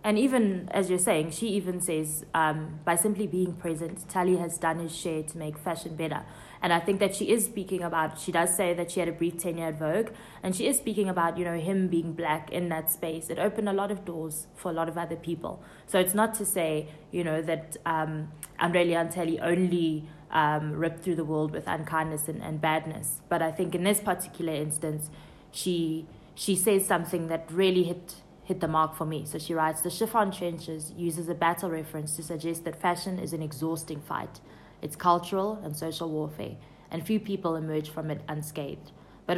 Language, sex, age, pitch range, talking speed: English, female, 20-39, 155-180 Hz, 210 wpm